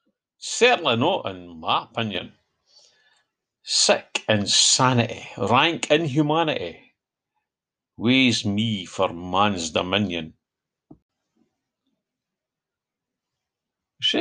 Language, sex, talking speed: English, male, 65 wpm